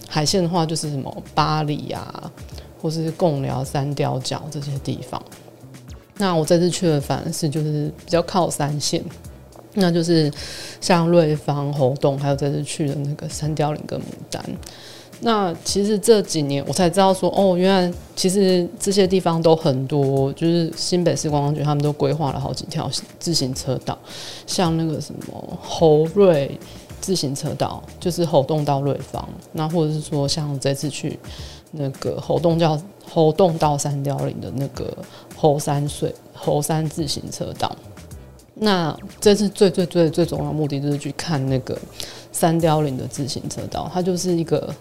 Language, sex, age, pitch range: Chinese, female, 20-39, 140-175 Hz